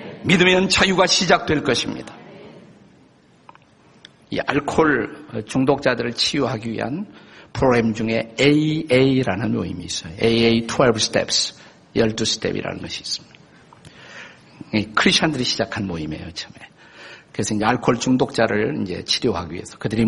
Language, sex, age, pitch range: Korean, male, 50-69, 115-155 Hz